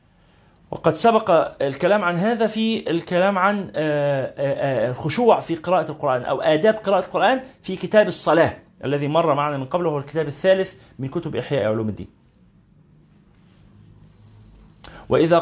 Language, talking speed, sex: Arabic, 130 wpm, male